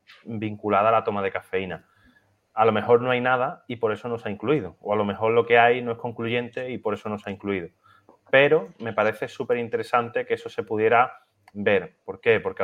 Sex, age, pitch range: male, 30-49, 100-120 Hz